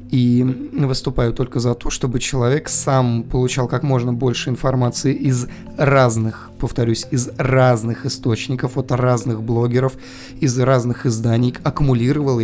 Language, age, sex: Russian, 20-39, male